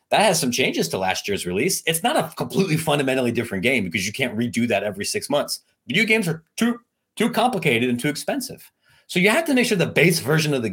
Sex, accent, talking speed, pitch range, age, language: male, American, 240 wpm, 95-130 Hz, 30-49, English